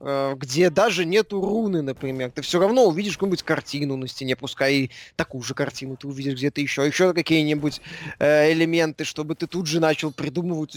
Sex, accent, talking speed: male, native, 180 wpm